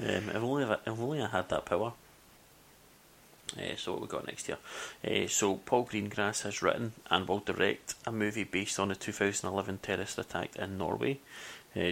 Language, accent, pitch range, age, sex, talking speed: English, British, 90-105 Hz, 30-49, male, 170 wpm